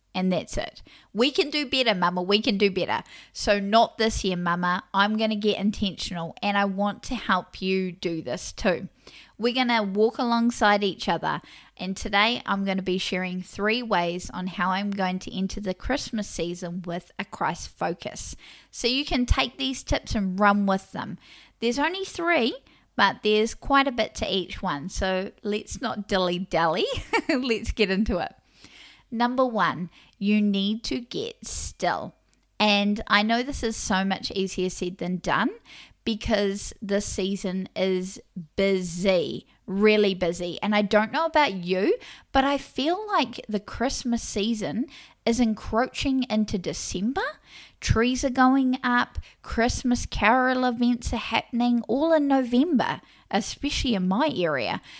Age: 20-39